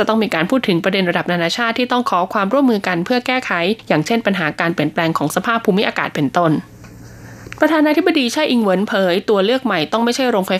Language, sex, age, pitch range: Thai, female, 20-39, 175-235 Hz